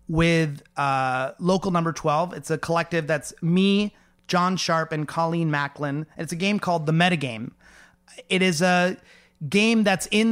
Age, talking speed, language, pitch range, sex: 30-49, 155 wpm, English, 155-190 Hz, male